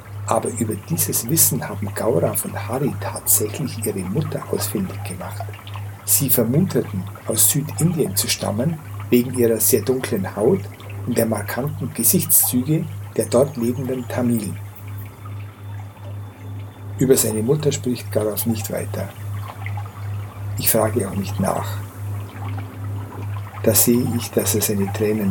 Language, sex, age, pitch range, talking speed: German, male, 60-79, 100-120 Hz, 120 wpm